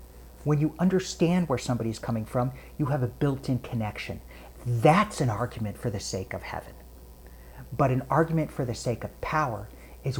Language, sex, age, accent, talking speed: English, male, 50-69, American, 170 wpm